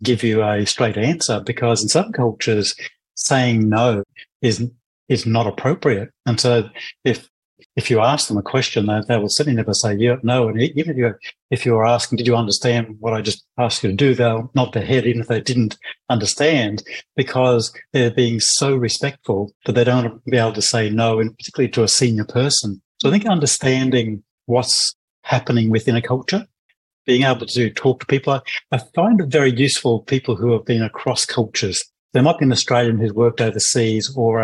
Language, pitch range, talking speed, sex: English, 115-130 Hz, 195 wpm, male